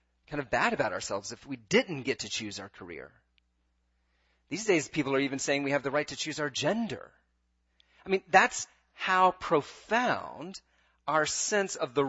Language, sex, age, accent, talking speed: English, male, 40-59, American, 180 wpm